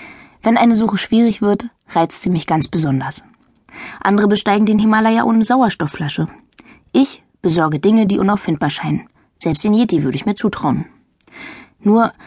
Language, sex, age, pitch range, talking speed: German, female, 20-39, 180-225 Hz, 145 wpm